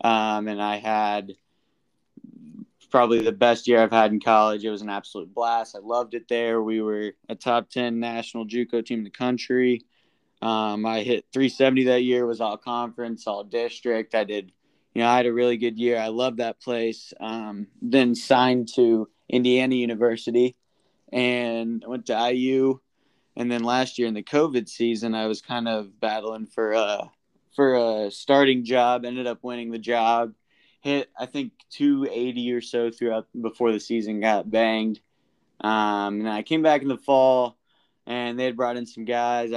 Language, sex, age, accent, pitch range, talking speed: English, male, 20-39, American, 110-125 Hz, 185 wpm